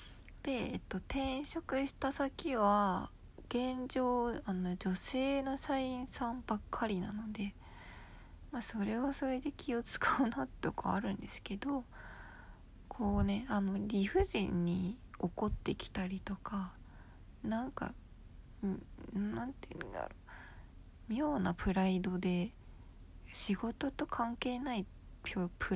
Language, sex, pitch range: Japanese, female, 180-245 Hz